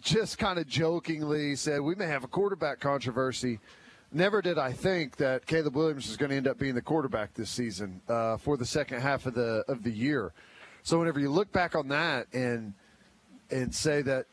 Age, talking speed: 40-59, 205 wpm